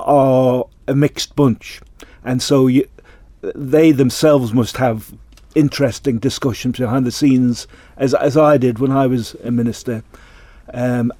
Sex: male